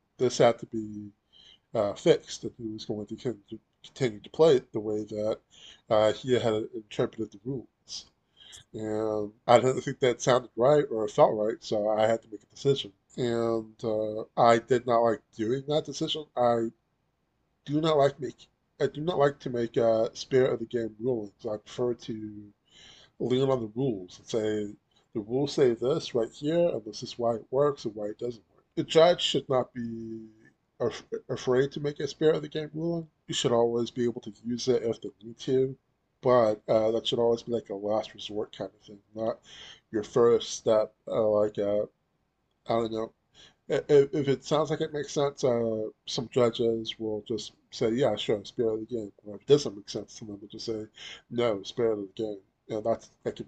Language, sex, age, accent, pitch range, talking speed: English, male, 20-39, American, 110-135 Hz, 200 wpm